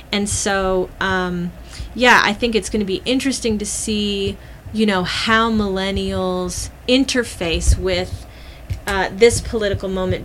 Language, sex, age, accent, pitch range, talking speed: English, female, 30-49, American, 175-205 Hz, 135 wpm